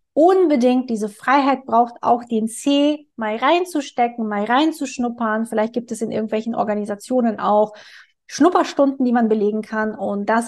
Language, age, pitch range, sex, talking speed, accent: German, 20-39, 210-250 Hz, female, 145 wpm, German